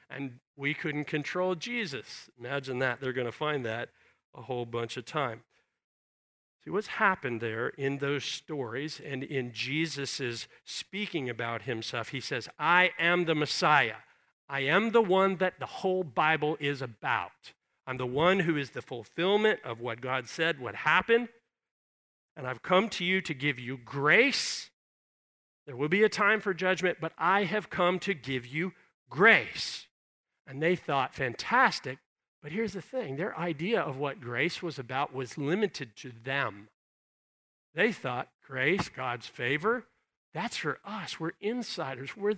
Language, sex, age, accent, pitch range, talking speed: English, male, 50-69, American, 135-190 Hz, 160 wpm